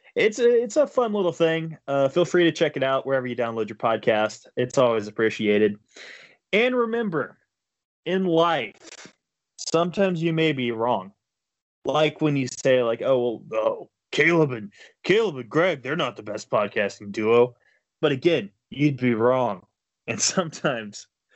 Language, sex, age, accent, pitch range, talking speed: English, male, 20-39, American, 125-175 Hz, 160 wpm